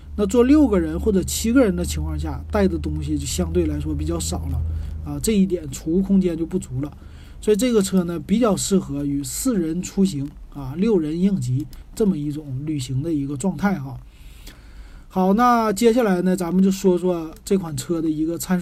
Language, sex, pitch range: Chinese, male, 140-205 Hz